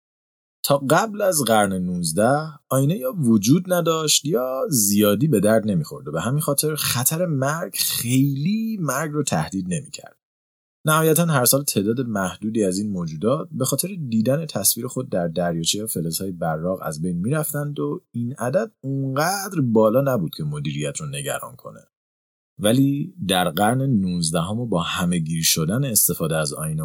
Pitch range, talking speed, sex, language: 90-145 Hz, 155 wpm, male, Persian